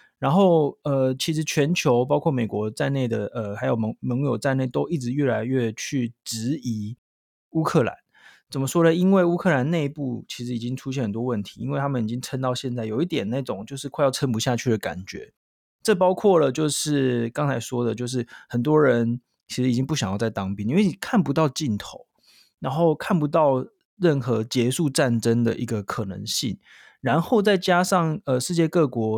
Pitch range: 120-155 Hz